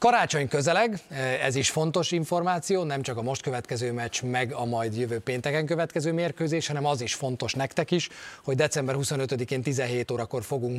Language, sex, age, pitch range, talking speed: Hungarian, male, 30-49, 125-165 Hz, 170 wpm